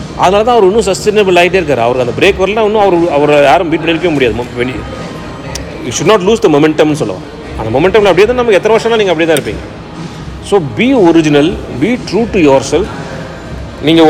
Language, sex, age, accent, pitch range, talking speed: Tamil, male, 40-59, native, 145-210 Hz, 185 wpm